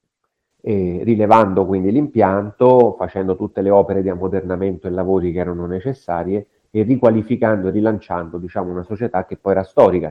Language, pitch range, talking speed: Italian, 90-105 Hz, 155 wpm